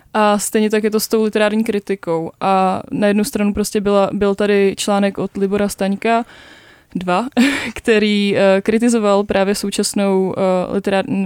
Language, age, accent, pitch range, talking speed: Czech, 20-39, native, 195-220 Hz, 145 wpm